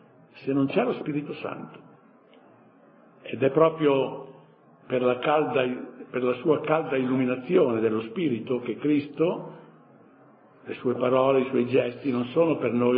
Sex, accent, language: male, native, Italian